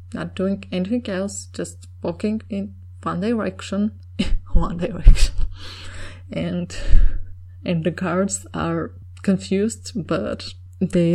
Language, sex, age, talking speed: English, female, 20-39, 100 wpm